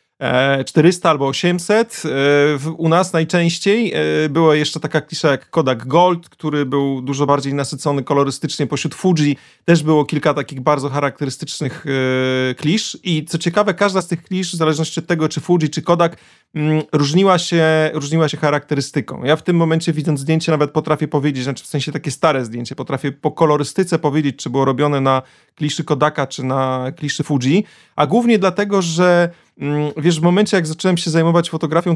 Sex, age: male, 30-49